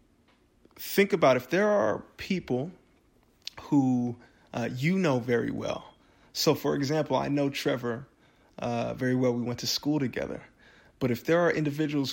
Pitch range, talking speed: 120-135 Hz, 155 wpm